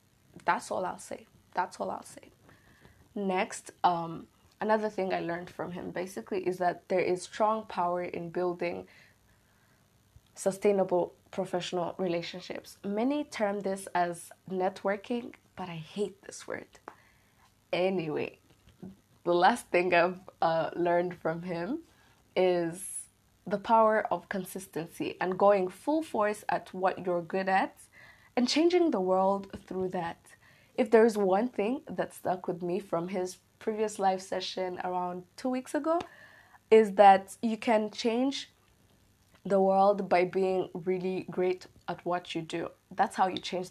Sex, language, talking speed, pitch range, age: female, English, 140 wpm, 175-210 Hz, 20-39